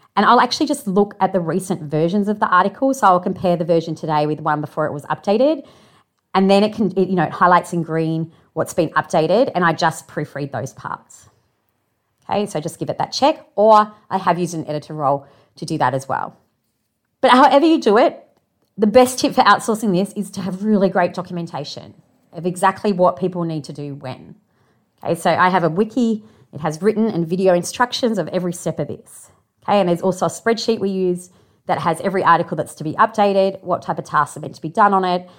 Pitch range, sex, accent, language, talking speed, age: 160-205 Hz, female, Australian, English, 225 wpm, 30-49